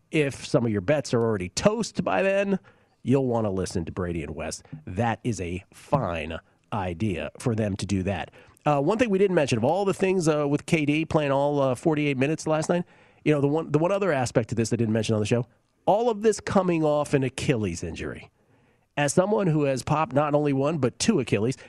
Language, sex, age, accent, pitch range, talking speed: English, male, 40-59, American, 110-150 Hz, 220 wpm